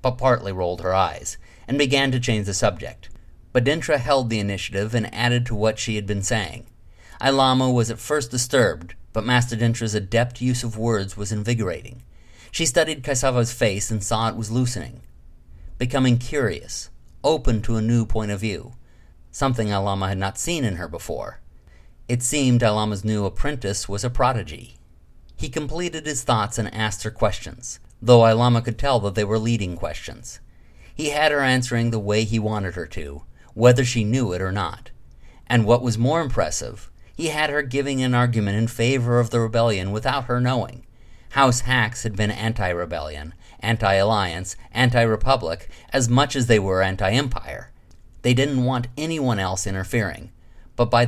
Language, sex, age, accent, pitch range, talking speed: English, male, 50-69, American, 100-125 Hz, 170 wpm